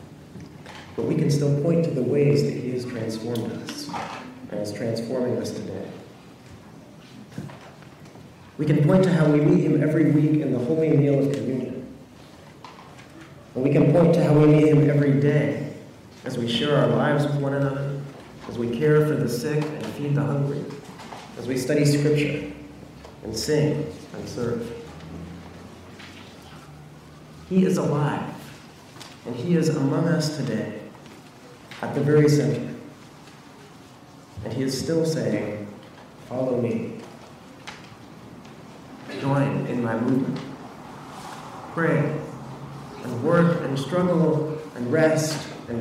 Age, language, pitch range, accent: 40-59, English, 120-150 Hz, American